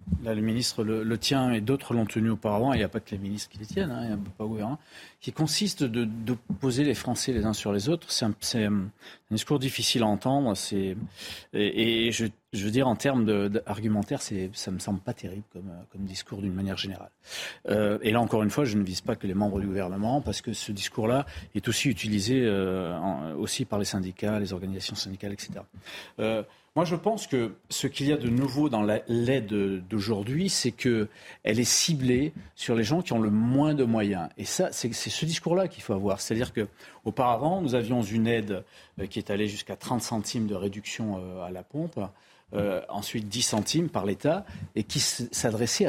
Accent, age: French, 40-59